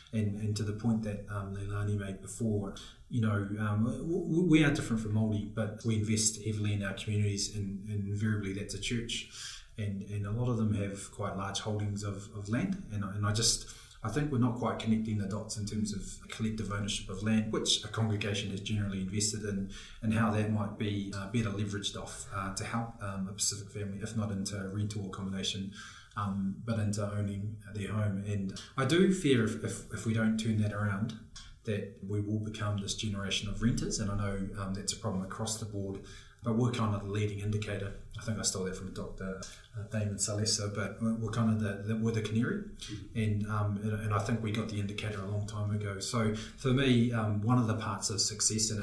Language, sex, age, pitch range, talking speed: English, male, 20-39, 100-110 Hz, 220 wpm